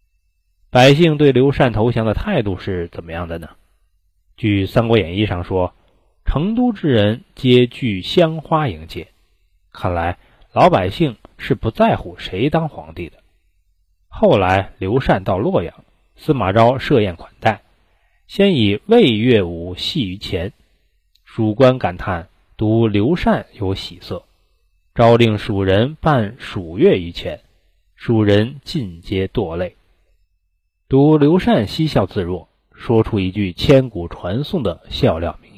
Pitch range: 90-130 Hz